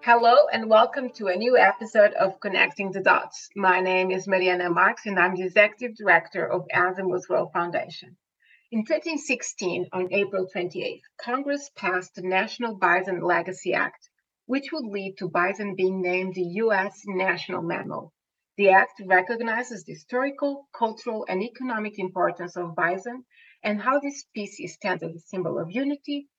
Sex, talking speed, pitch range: female, 155 wpm, 185-235 Hz